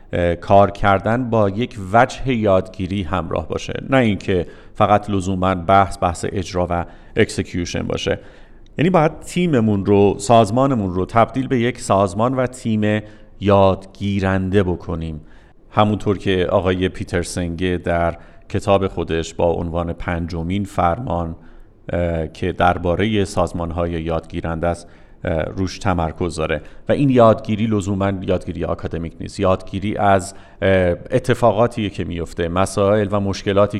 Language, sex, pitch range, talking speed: Persian, male, 90-110 Hz, 115 wpm